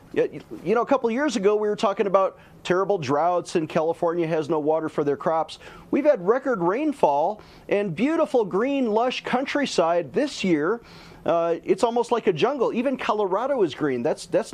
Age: 40-59